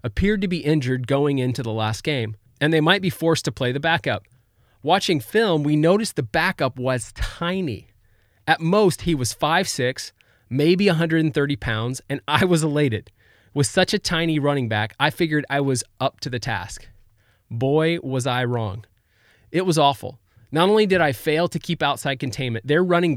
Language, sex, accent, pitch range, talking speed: English, male, American, 115-155 Hz, 180 wpm